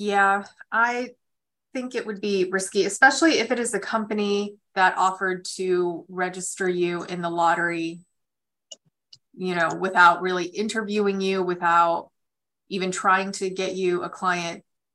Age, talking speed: 20-39, 140 wpm